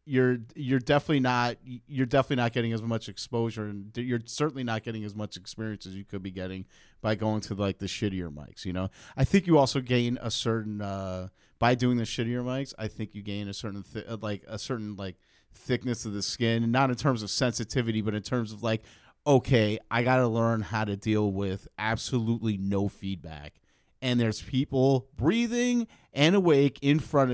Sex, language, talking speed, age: male, English, 200 wpm, 30-49